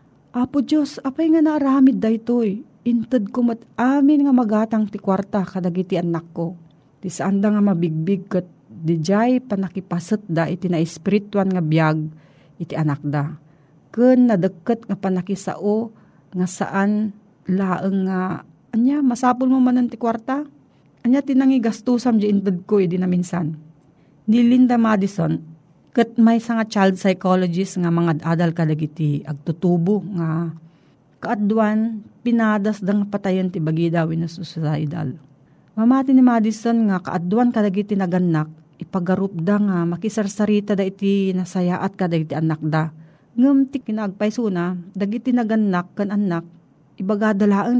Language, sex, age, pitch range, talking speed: Filipino, female, 40-59, 165-220 Hz, 125 wpm